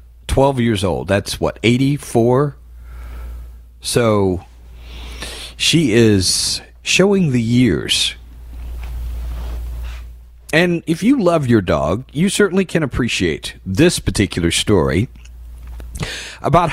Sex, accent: male, American